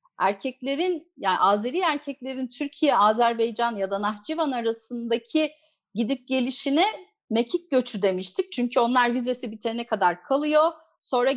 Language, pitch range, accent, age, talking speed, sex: Turkish, 225-305 Hz, native, 40-59, 115 wpm, female